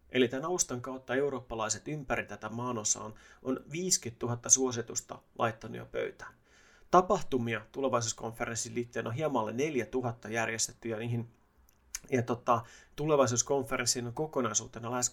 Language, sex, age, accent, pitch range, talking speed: Finnish, male, 30-49, native, 115-135 Hz, 125 wpm